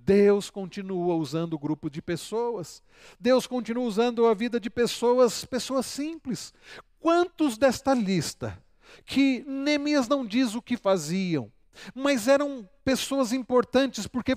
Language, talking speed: Portuguese, 130 wpm